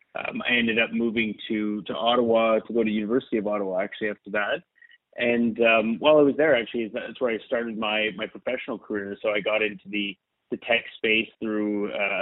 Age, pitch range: 30-49, 105-120 Hz